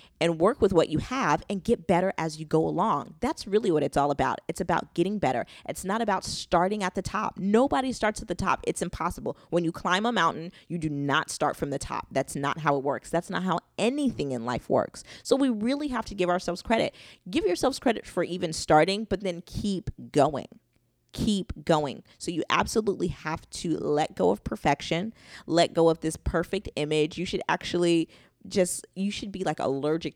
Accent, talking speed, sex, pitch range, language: American, 210 wpm, female, 150-190 Hz, English